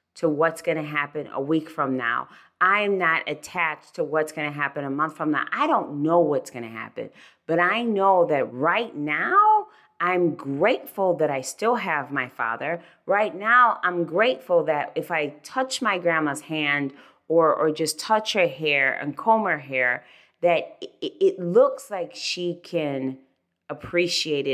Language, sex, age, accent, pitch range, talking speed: English, female, 30-49, American, 140-190 Hz, 165 wpm